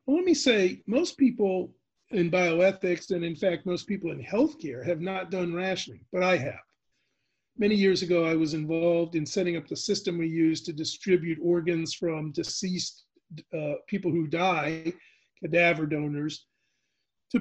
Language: English